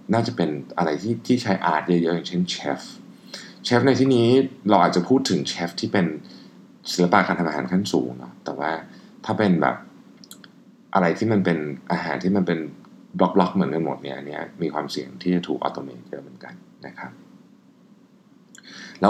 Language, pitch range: Thai, 75-100 Hz